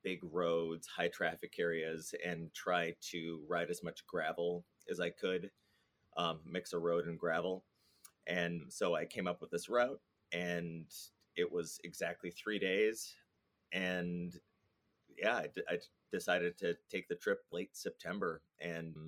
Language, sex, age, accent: English, male, 30-49, American